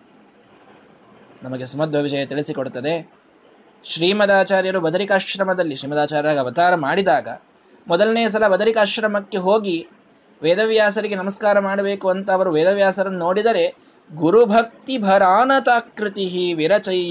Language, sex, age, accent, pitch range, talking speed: Kannada, male, 20-39, native, 155-220 Hz, 80 wpm